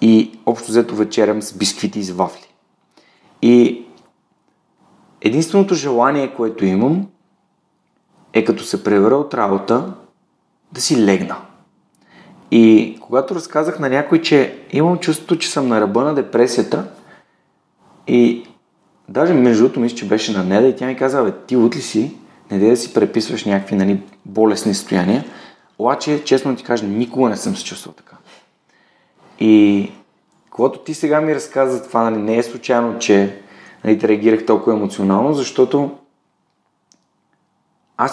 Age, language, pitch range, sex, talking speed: 30-49, Bulgarian, 105-135 Hz, male, 145 wpm